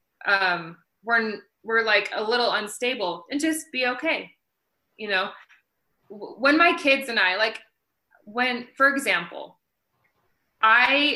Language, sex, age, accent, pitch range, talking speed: English, female, 20-39, American, 180-235 Hz, 125 wpm